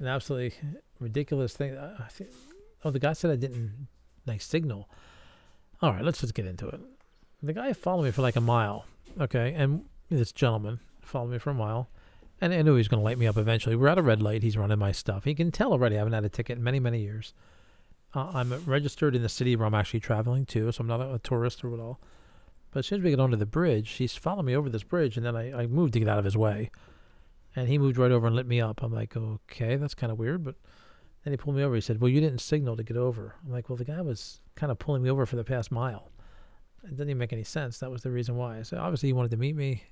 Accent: American